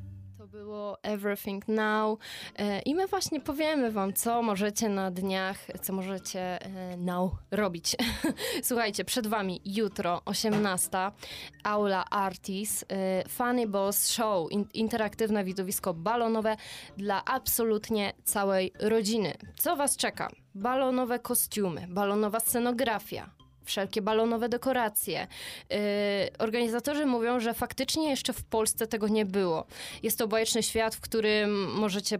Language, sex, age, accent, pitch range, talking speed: Polish, female, 20-39, native, 195-225 Hz, 120 wpm